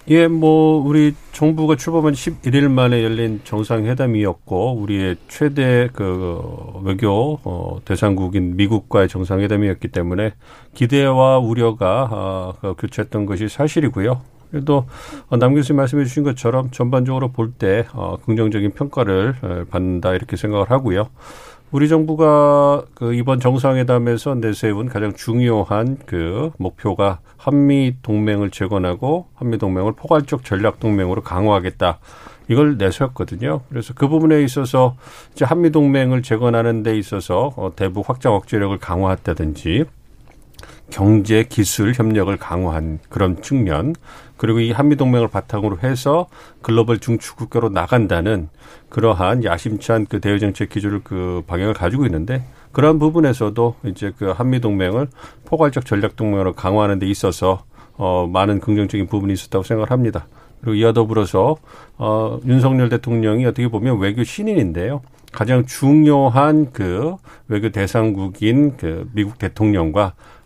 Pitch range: 100-130 Hz